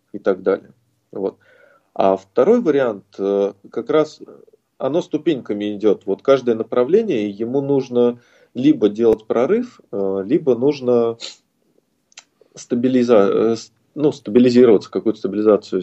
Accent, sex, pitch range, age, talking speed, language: native, male, 105-130 Hz, 20-39, 100 wpm, Russian